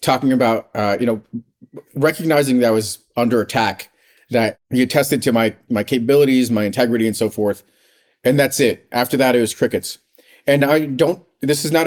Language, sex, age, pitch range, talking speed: English, male, 40-59, 110-140 Hz, 185 wpm